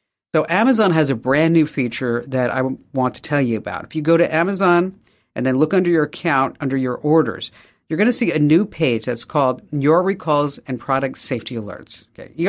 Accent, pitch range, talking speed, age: American, 125-165 Hz, 210 wpm, 50-69